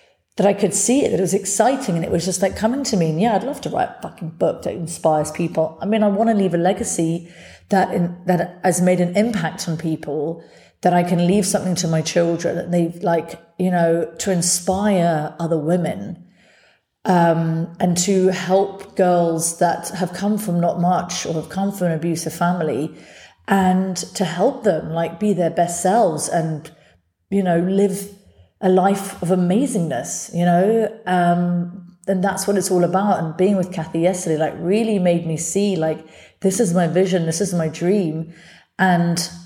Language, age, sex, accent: English, 40-59, female, British